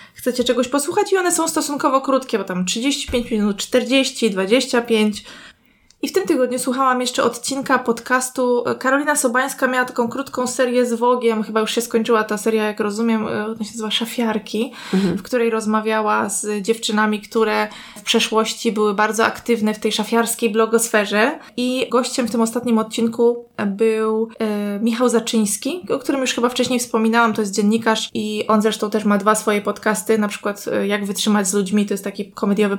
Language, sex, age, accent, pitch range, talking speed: Polish, female, 20-39, native, 215-250 Hz, 170 wpm